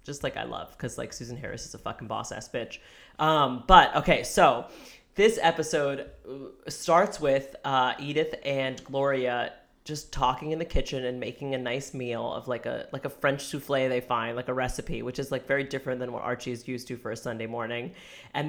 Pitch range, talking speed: 130-160 Hz, 205 wpm